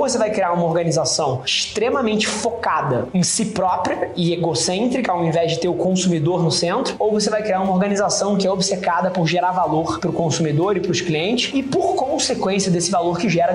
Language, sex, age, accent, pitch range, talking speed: Portuguese, male, 20-39, Brazilian, 170-205 Hz, 205 wpm